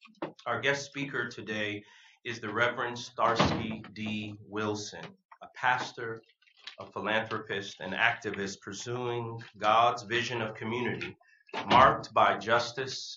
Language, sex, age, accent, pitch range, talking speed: English, male, 30-49, American, 105-120 Hz, 110 wpm